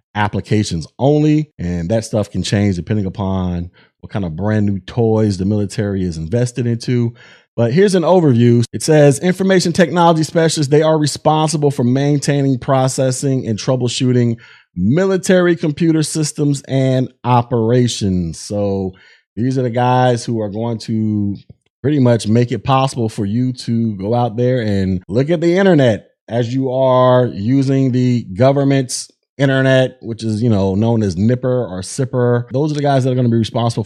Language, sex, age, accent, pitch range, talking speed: English, male, 30-49, American, 110-145 Hz, 165 wpm